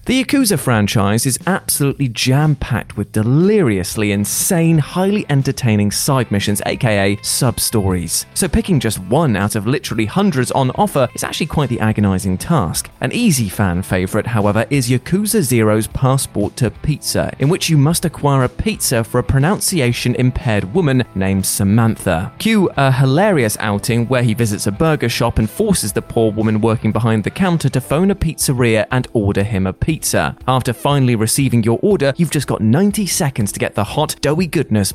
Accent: British